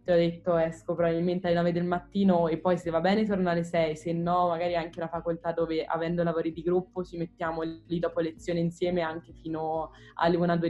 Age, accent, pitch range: 20-39, native, 160-180 Hz